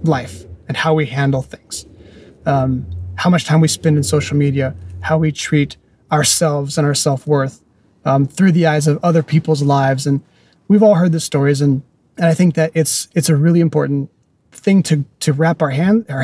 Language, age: English, 30-49